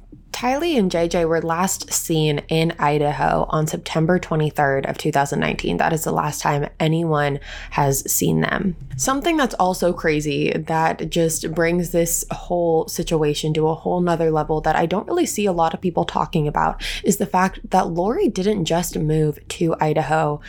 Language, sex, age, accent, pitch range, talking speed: English, female, 20-39, American, 150-175 Hz, 170 wpm